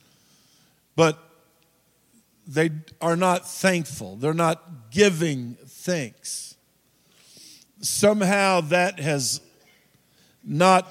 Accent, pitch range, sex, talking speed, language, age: American, 140-180 Hz, male, 70 wpm, English, 50-69